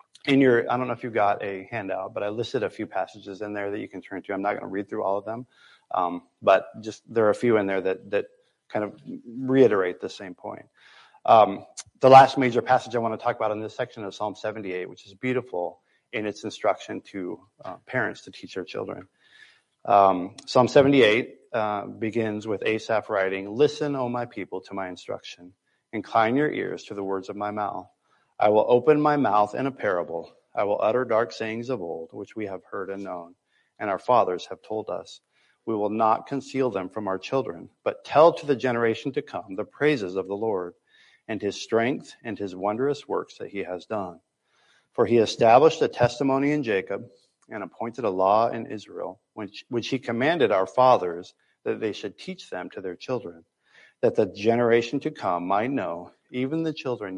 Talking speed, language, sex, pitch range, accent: 205 wpm, English, male, 100-130 Hz, American